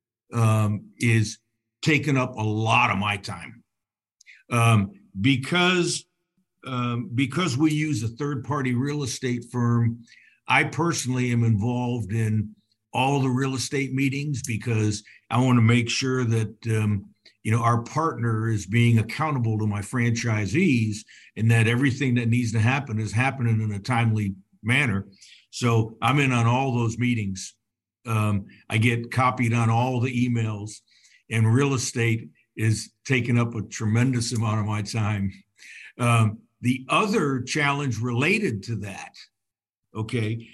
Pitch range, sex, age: 110-130 Hz, male, 60-79